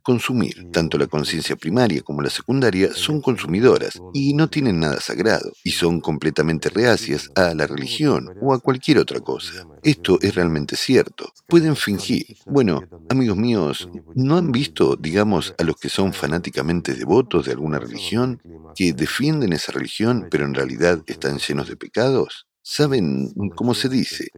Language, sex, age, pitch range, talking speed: Spanish, male, 50-69, 80-130 Hz, 160 wpm